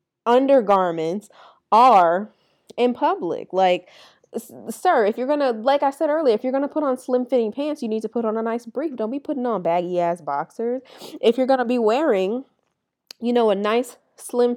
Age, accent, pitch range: 20-39, American, 170-245 Hz